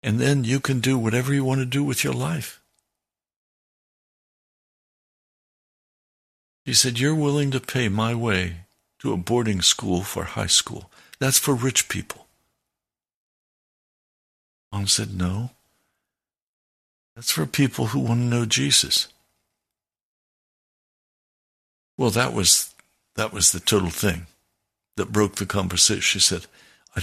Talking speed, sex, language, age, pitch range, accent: 125 wpm, male, English, 60-79, 95-130 Hz, American